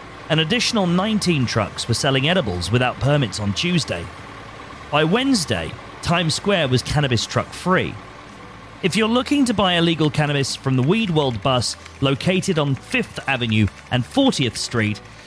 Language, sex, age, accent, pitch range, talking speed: English, male, 30-49, British, 110-170 Hz, 150 wpm